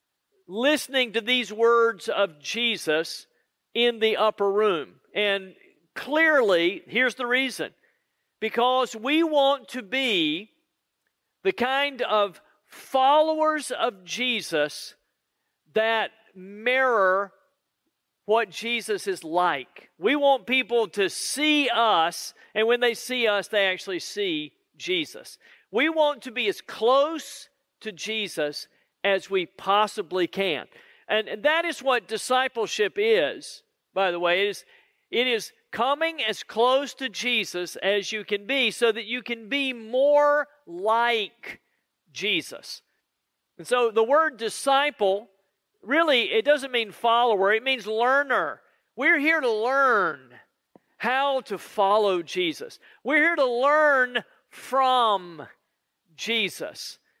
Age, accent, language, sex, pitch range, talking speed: 50-69, American, English, male, 205-285 Hz, 120 wpm